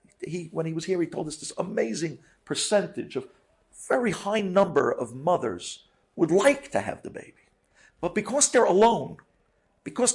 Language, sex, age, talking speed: English, male, 50-69, 165 wpm